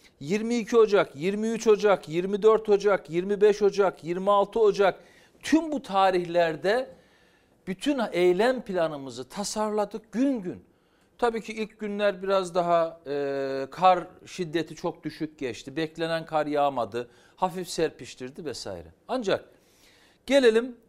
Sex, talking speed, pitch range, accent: male, 110 wpm, 160-210 Hz, native